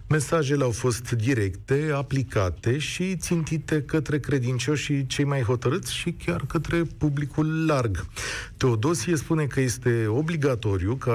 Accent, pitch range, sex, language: native, 110-150 Hz, male, Romanian